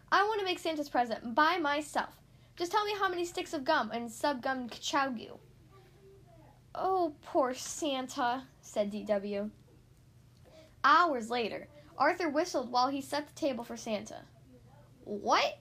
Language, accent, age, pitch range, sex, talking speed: English, American, 10-29, 220-325 Hz, female, 140 wpm